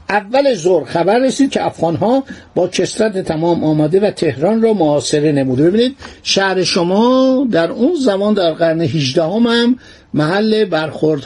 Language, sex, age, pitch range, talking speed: Persian, male, 60-79, 155-205 Hz, 155 wpm